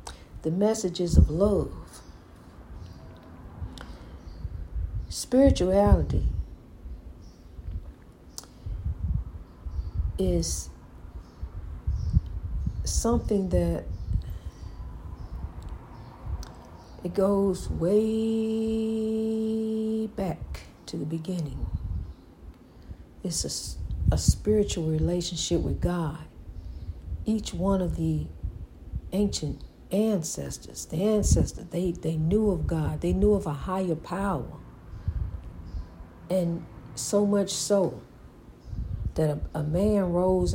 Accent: American